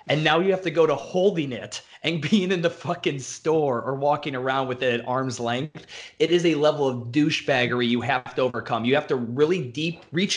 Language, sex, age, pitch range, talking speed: English, male, 20-39, 125-155 Hz, 225 wpm